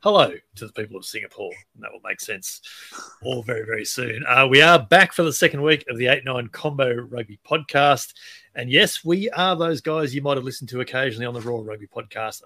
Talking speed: 220 wpm